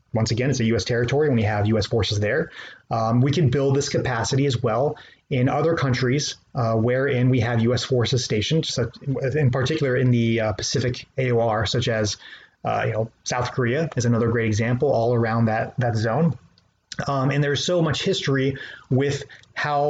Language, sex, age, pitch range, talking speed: English, male, 30-49, 120-140 Hz, 195 wpm